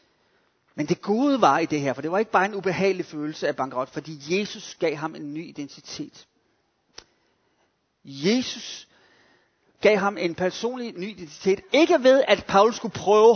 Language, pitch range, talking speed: Danish, 160-210 Hz, 165 wpm